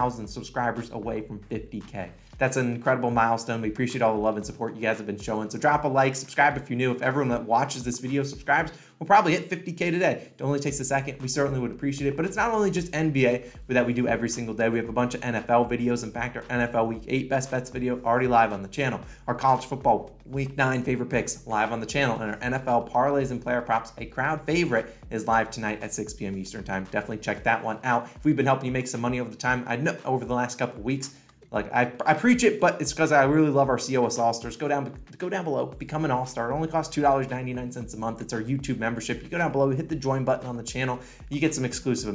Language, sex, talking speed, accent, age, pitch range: English, male, 260 wpm, American, 20-39, 120-145 Hz